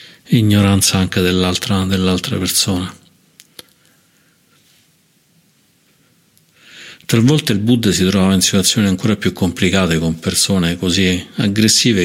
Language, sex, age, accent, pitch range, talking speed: Italian, male, 50-69, native, 90-105 Hz, 90 wpm